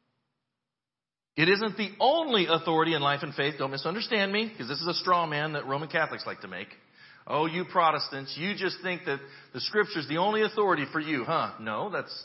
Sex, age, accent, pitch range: male, 40-59, American, 150-210 Hz